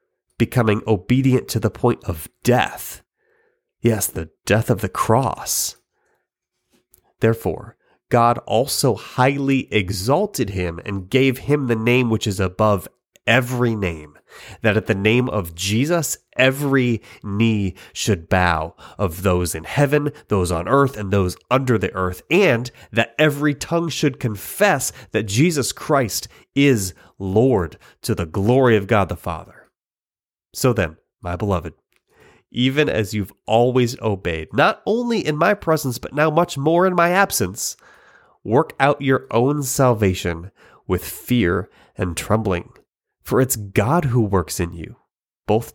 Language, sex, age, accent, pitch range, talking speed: English, male, 30-49, American, 95-135 Hz, 140 wpm